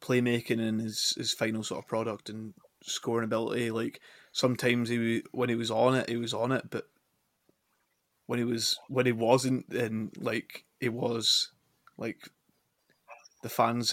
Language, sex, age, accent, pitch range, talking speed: English, male, 20-39, British, 115-130 Hz, 160 wpm